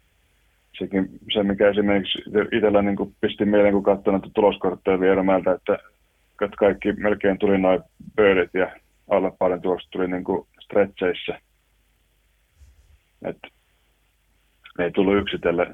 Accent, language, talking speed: native, Finnish, 115 wpm